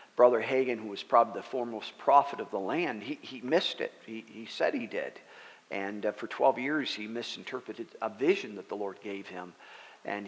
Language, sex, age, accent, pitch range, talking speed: English, male, 50-69, American, 115-140 Hz, 205 wpm